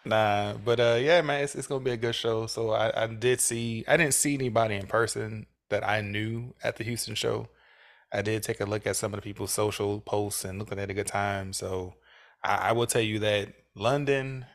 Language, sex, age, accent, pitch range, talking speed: English, male, 20-39, American, 100-110 Hz, 235 wpm